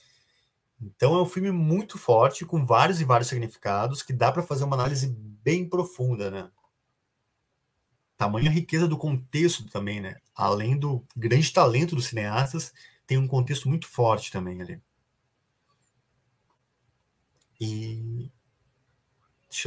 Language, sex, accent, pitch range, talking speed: Portuguese, male, Brazilian, 110-145 Hz, 130 wpm